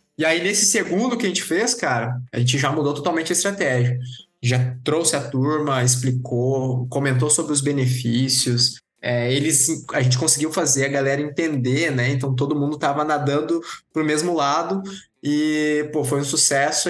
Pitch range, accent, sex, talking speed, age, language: 125-155 Hz, Brazilian, male, 160 wpm, 20-39, Portuguese